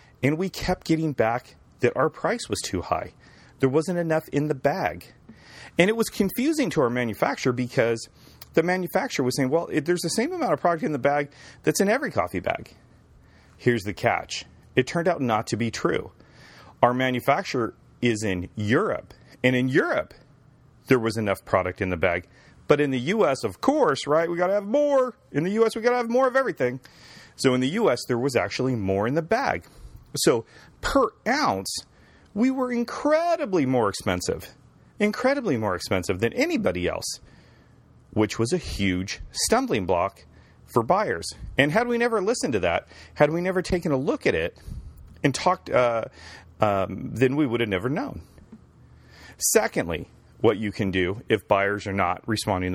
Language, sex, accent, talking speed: English, male, American, 180 wpm